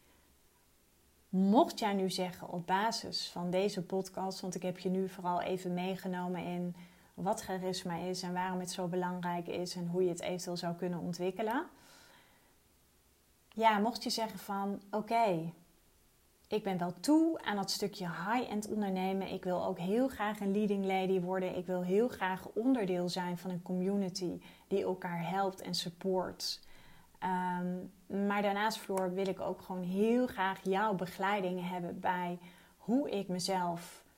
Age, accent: 30-49, Dutch